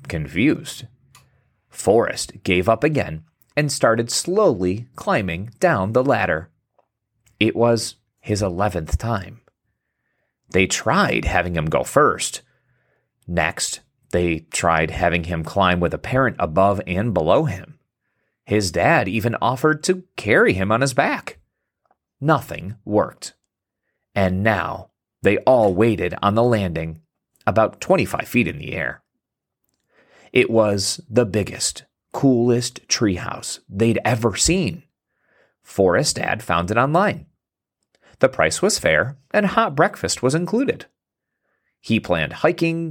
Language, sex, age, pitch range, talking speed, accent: English, male, 30-49, 95-135 Hz, 125 wpm, American